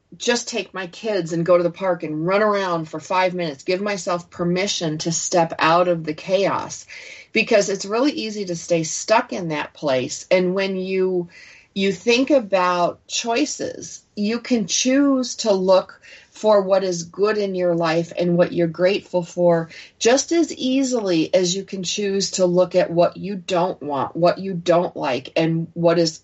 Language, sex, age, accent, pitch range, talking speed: English, female, 40-59, American, 170-205 Hz, 180 wpm